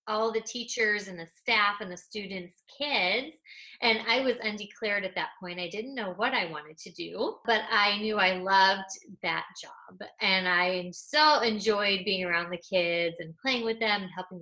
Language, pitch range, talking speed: English, 185-235 Hz, 190 wpm